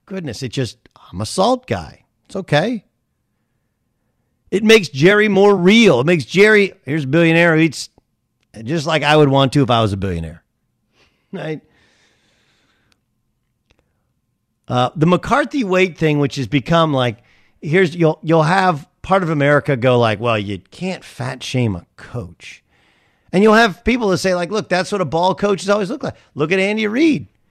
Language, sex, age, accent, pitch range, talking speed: English, male, 50-69, American, 130-195 Hz, 175 wpm